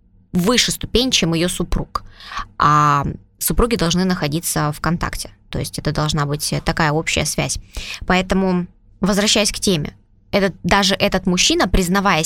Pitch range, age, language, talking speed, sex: 160-210 Hz, 20-39, Russian, 130 wpm, female